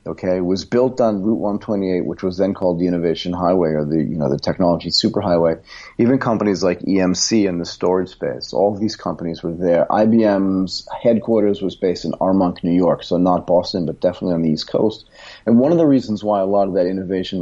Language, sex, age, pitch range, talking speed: English, male, 40-59, 90-105 Hz, 215 wpm